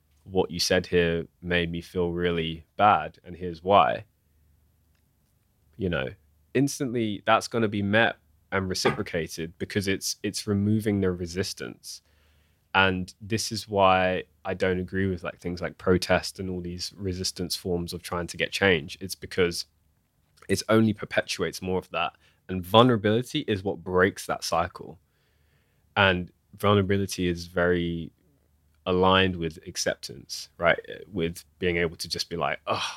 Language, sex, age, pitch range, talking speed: English, male, 20-39, 85-100 Hz, 145 wpm